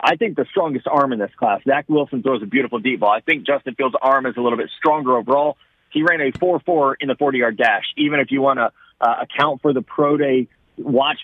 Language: English